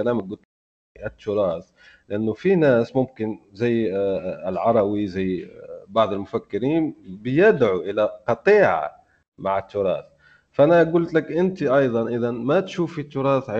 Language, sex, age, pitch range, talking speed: Arabic, male, 30-49, 110-140 Hz, 115 wpm